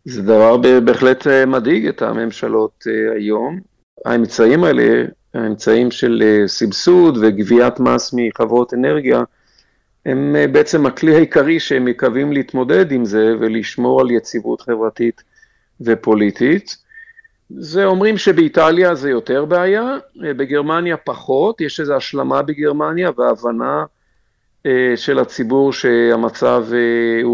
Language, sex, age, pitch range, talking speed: Hebrew, male, 50-69, 120-165 Hz, 105 wpm